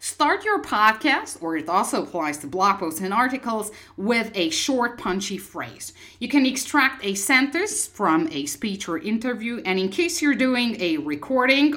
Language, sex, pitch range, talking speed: English, female, 170-285 Hz, 175 wpm